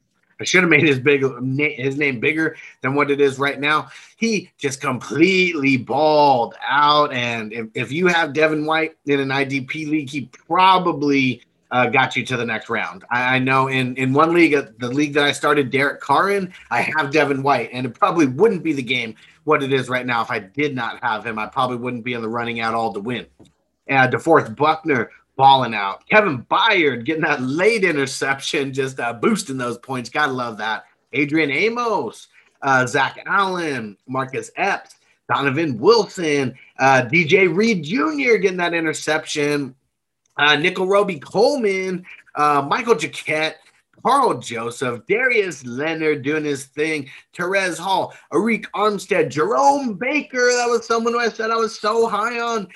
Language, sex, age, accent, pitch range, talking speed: English, male, 30-49, American, 130-185 Hz, 175 wpm